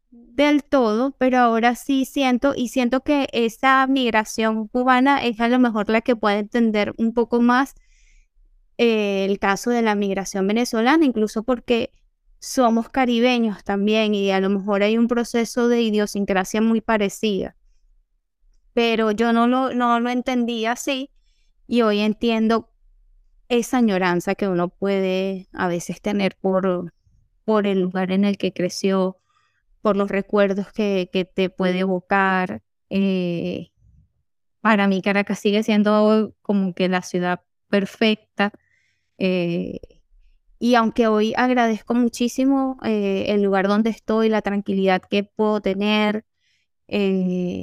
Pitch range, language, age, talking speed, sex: 195-235 Hz, Spanish, 20-39, 135 wpm, female